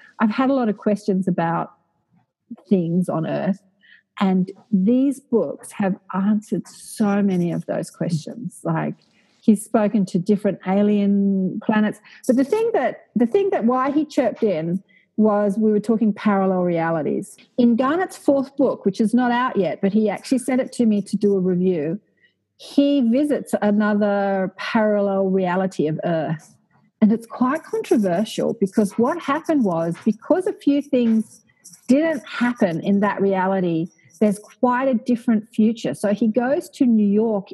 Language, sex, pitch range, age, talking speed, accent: English, female, 195-245 Hz, 40-59, 160 wpm, Australian